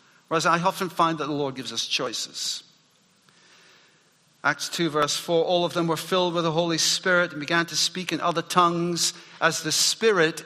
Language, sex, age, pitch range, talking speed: English, male, 50-69, 150-185 Hz, 190 wpm